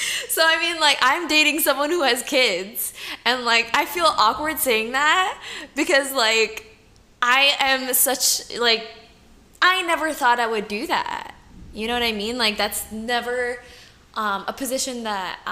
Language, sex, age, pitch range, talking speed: English, female, 10-29, 200-255 Hz, 160 wpm